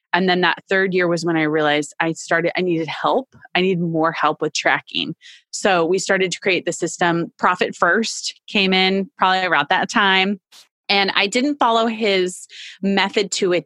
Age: 30-49